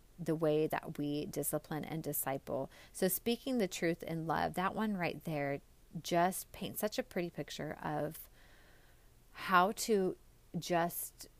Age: 30-49